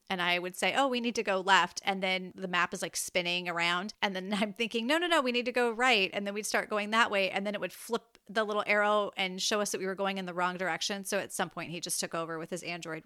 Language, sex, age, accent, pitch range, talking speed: English, female, 30-49, American, 185-220 Hz, 310 wpm